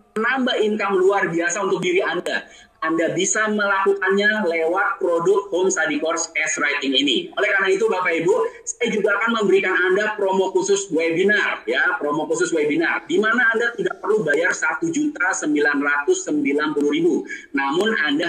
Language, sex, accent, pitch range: Indonesian, male, native, 180-245 Hz